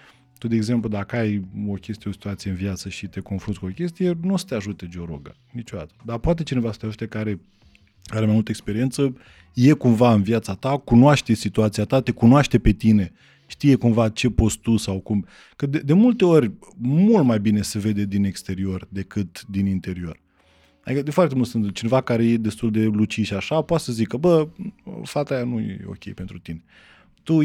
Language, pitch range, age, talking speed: Romanian, 105-150 Hz, 20-39, 205 wpm